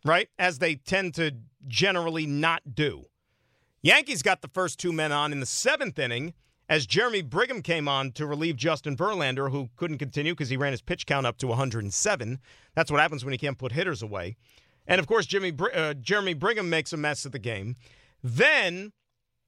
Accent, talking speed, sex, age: American, 195 wpm, male, 40-59